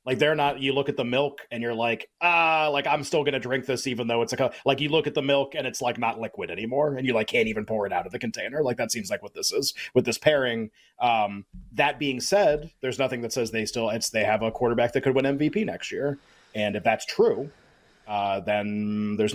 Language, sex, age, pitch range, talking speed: English, male, 30-49, 115-145 Hz, 265 wpm